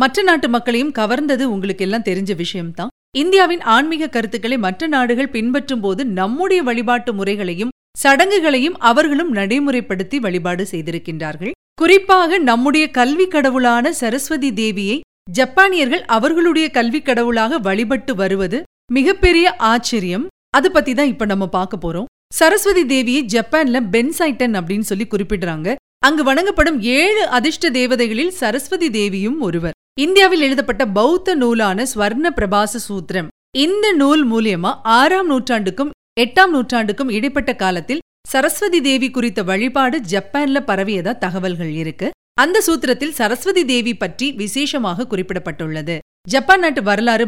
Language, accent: Tamil, native